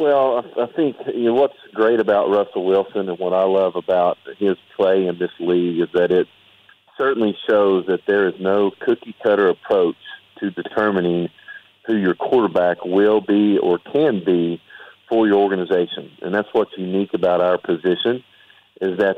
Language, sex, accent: English, male, American